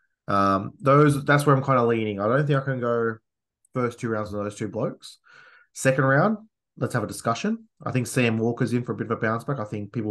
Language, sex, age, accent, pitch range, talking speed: English, male, 20-39, Australian, 105-125 Hz, 250 wpm